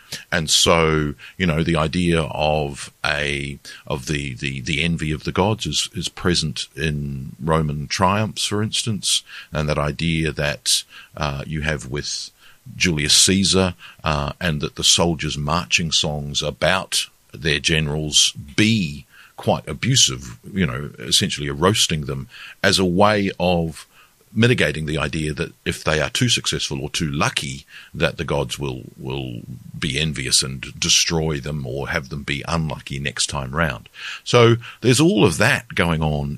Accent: Australian